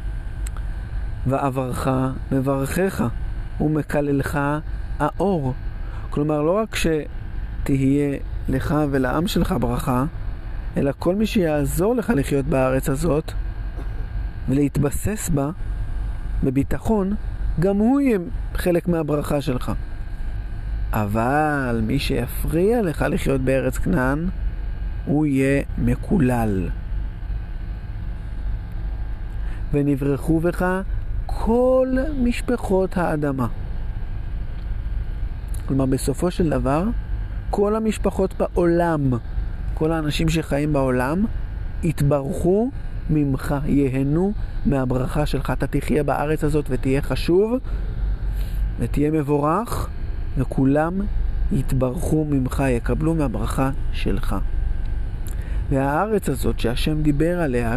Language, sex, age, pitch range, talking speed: Hebrew, male, 50-69, 110-155 Hz, 80 wpm